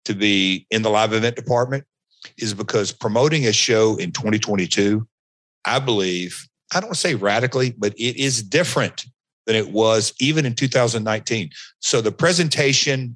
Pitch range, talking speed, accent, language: 105-130 Hz, 160 wpm, American, English